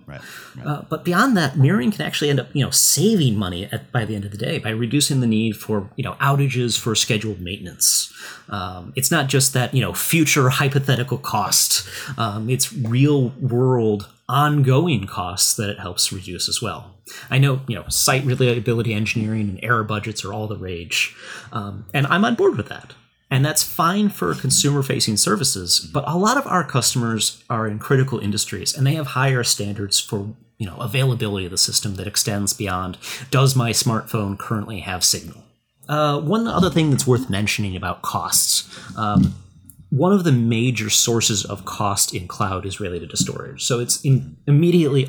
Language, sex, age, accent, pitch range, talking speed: English, male, 30-49, American, 105-135 Hz, 185 wpm